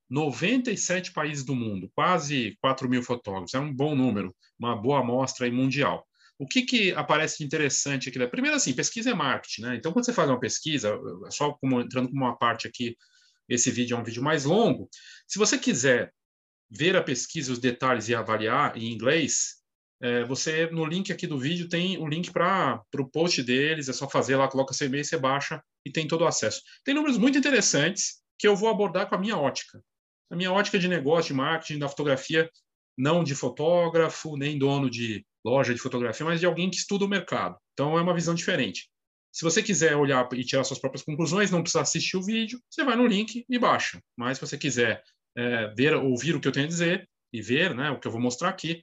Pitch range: 130-180 Hz